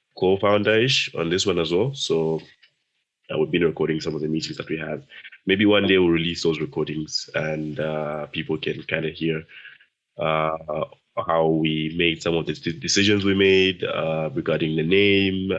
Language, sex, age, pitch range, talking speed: English, male, 20-39, 80-85 Hz, 185 wpm